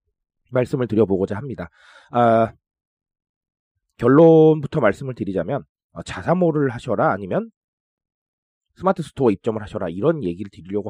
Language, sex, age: Korean, male, 30-49